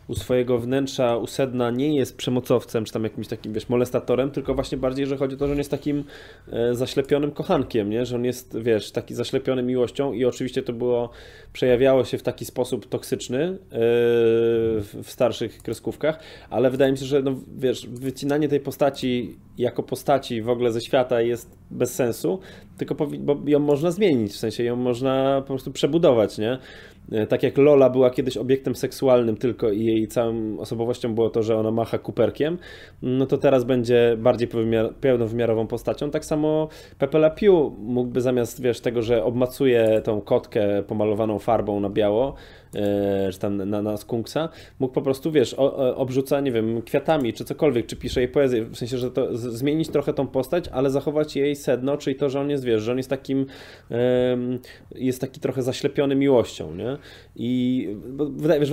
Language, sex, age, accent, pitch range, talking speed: Polish, male, 20-39, native, 115-140 Hz, 180 wpm